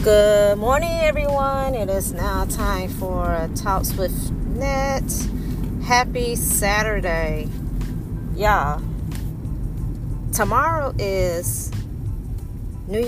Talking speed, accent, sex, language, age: 85 wpm, American, female, English, 30-49